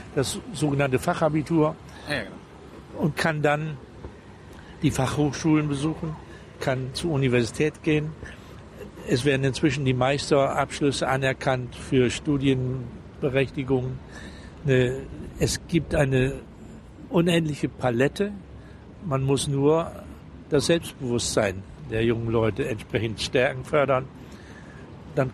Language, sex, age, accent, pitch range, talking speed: German, male, 60-79, German, 125-150 Hz, 90 wpm